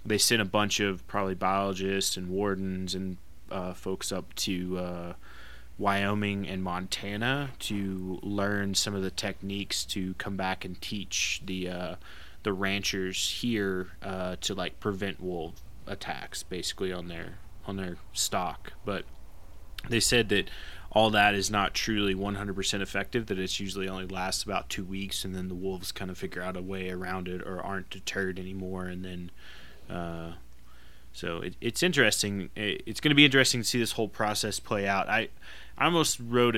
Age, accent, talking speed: 20-39, American, 170 wpm